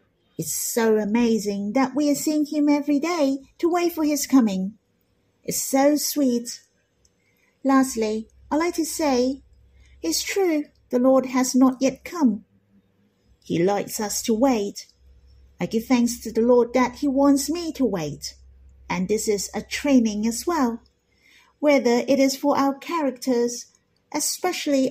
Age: 50-69